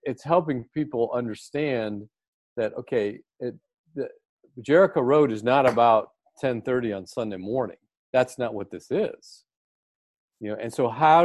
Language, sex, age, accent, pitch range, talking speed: English, male, 40-59, American, 110-150 Hz, 135 wpm